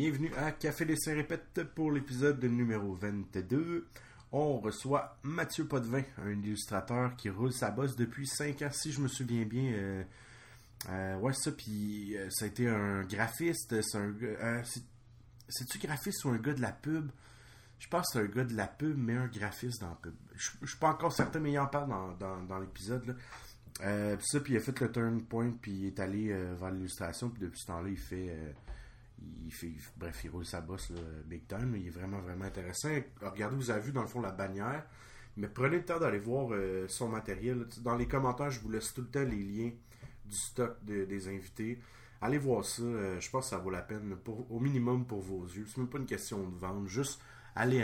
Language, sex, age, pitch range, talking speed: French, male, 30-49, 100-125 Hz, 225 wpm